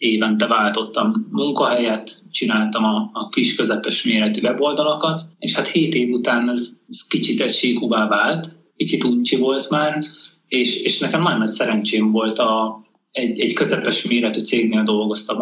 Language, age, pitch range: Hungarian, 30-49, 110-175 Hz